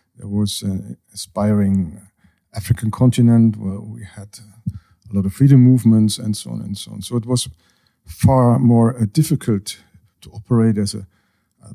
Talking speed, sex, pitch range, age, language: 160 wpm, male, 100-125 Hz, 50-69, Hungarian